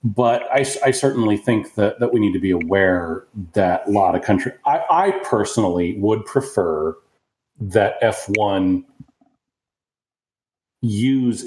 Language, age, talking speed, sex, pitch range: Greek, 40-59, 125 wpm, male, 95-130 Hz